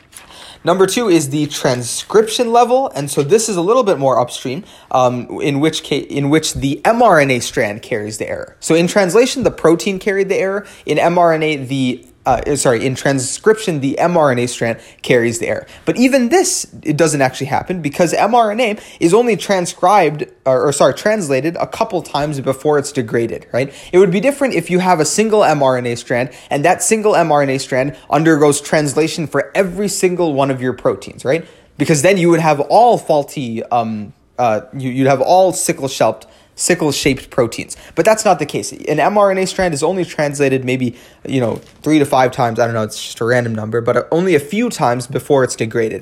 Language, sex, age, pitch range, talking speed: English, male, 20-39, 135-185 Hz, 190 wpm